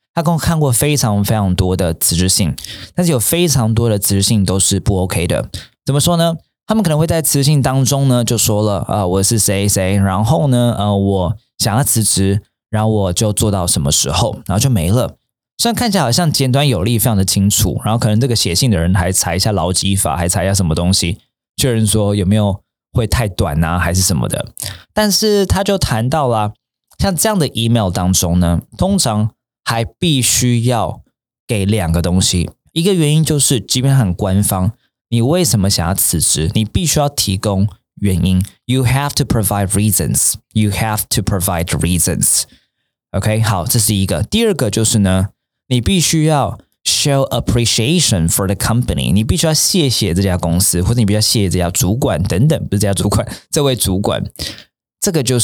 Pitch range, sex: 95-130 Hz, male